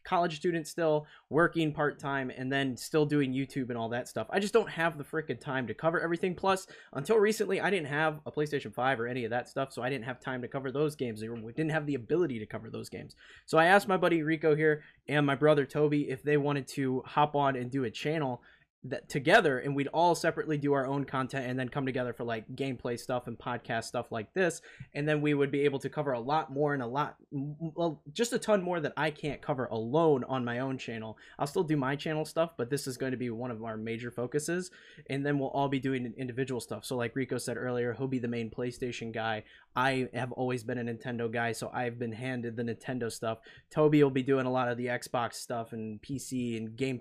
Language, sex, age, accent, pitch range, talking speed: English, male, 20-39, American, 120-150 Hz, 245 wpm